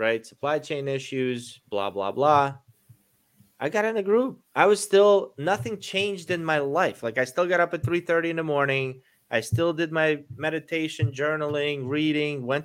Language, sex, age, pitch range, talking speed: English, male, 30-49, 110-145 Hz, 180 wpm